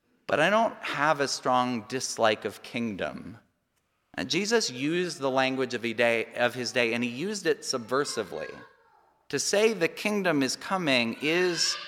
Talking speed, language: 140 wpm, English